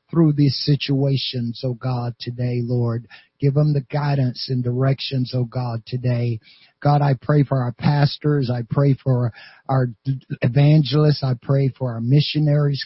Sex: male